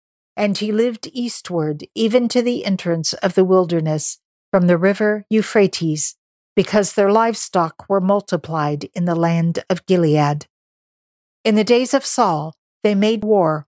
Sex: female